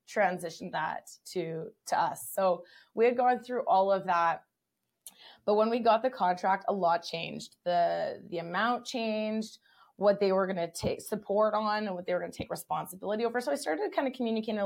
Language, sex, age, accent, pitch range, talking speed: English, female, 20-39, American, 185-235 Hz, 200 wpm